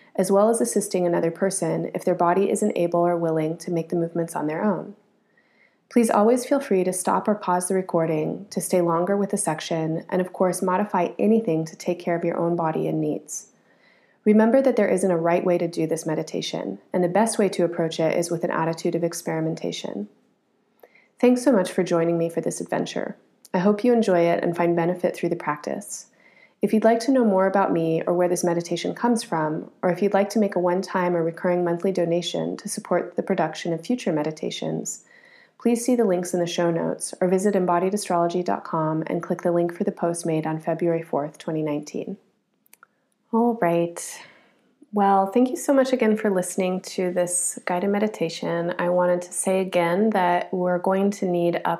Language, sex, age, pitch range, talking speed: English, female, 30-49, 170-205 Hz, 205 wpm